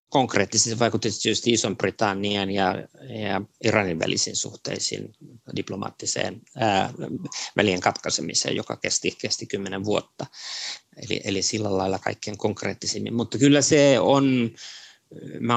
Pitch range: 100-120 Hz